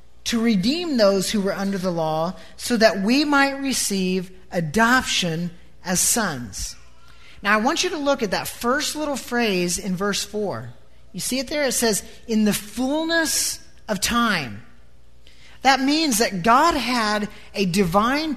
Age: 40-59